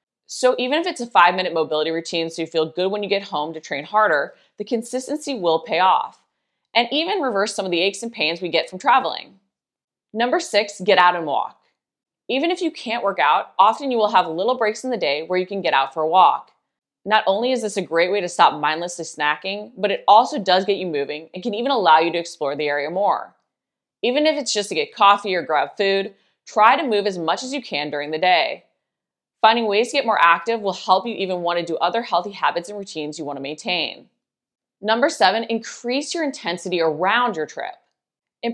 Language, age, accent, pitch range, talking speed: English, 20-39, American, 170-235 Hz, 230 wpm